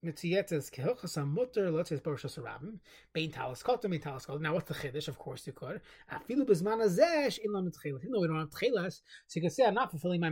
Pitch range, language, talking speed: 150-200 Hz, English, 220 wpm